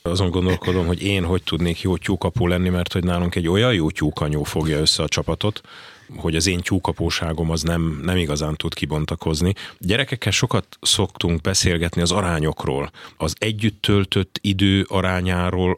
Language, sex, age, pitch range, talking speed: Hungarian, male, 30-49, 80-100 Hz, 150 wpm